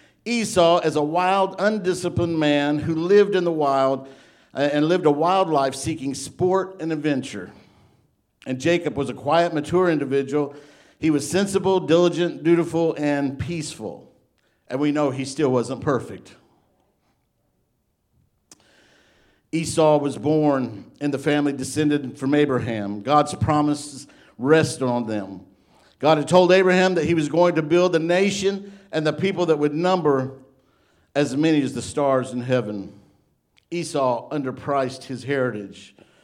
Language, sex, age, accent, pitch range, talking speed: English, male, 50-69, American, 135-170 Hz, 140 wpm